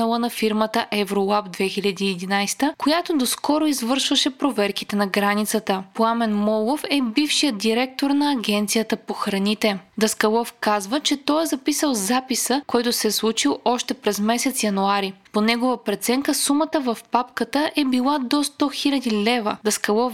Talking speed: 140 wpm